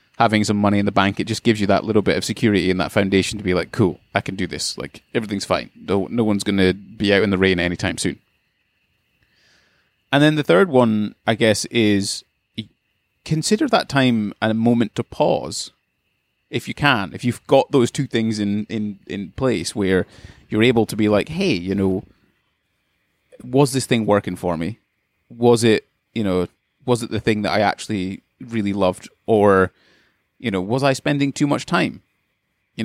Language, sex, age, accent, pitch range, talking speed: English, male, 30-49, British, 95-120 Hz, 195 wpm